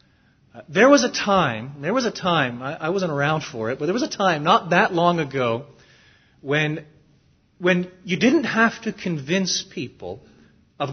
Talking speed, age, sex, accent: 175 wpm, 40-59, male, American